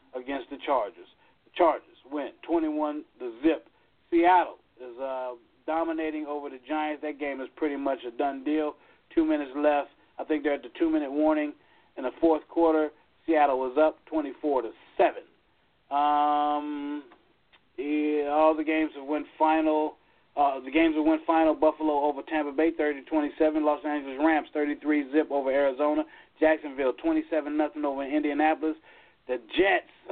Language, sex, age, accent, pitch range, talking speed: English, male, 40-59, American, 145-175 Hz, 155 wpm